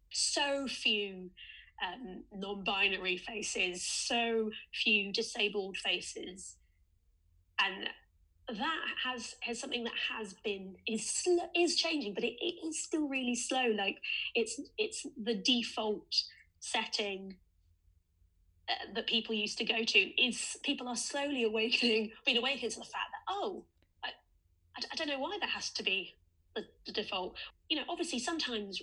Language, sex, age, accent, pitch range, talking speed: English, female, 20-39, British, 205-265 Hz, 145 wpm